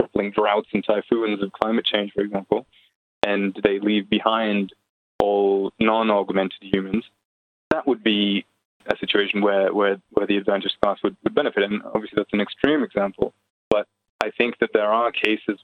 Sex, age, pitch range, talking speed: male, 20-39, 100-115 Hz, 160 wpm